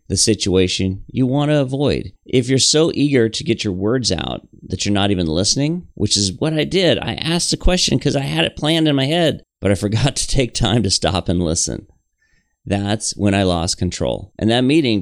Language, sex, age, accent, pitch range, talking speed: English, male, 40-59, American, 95-130 Hz, 220 wpm